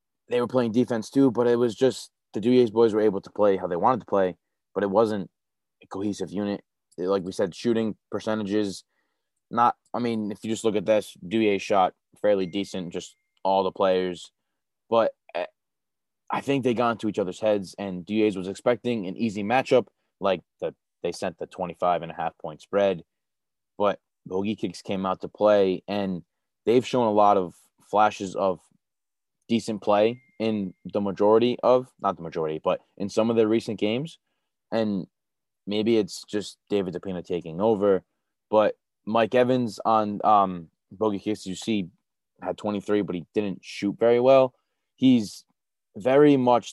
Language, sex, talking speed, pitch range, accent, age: English, male, 170 wpm, 95-115 Hz, American, 20-39